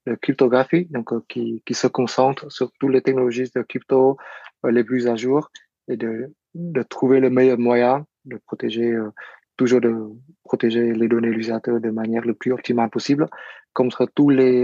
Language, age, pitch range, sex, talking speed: French, 20-39, 120-135 Hz, male, 180 wpm